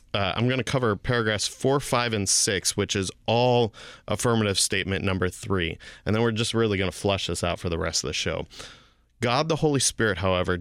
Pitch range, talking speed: 95-120 Hz, 215 wpm